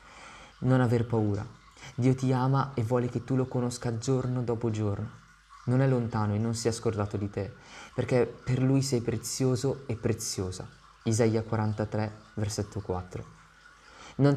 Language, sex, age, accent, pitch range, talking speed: Italian, male, 20-39, native, 110-125 Hz, 155 wpm